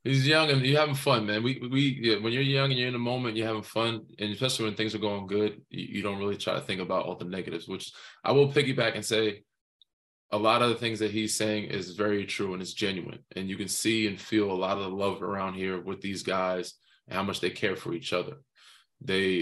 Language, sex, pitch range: English, male, 100-110 Hz